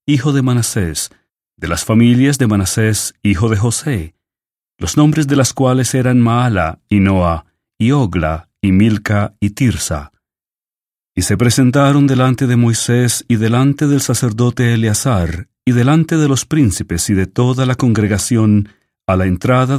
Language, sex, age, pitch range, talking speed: English, male, 40-59, 95-125 Hz, 150 wpm